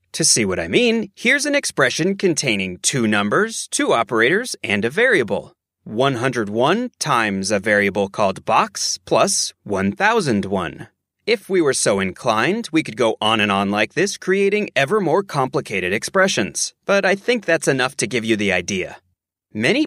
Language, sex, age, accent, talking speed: English, male, 30-49, American, 160 wpm